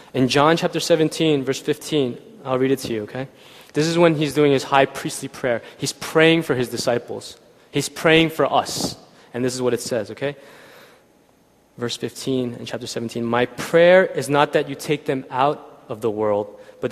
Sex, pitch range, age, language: male, 135-180 Hz, 20-39, Korean